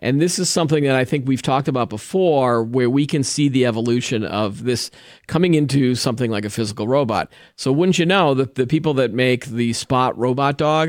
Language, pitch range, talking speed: English, 115-145 Hz, 215 wpm